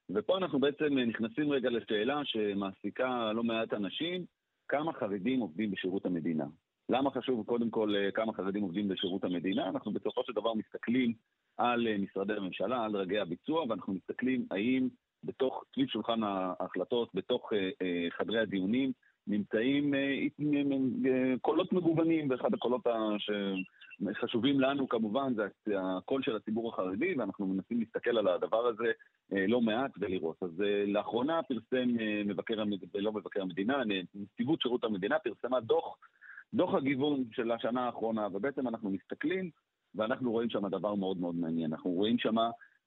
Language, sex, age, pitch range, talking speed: Hebrew, male, 40-59, 100-135 Hz, 140 wpm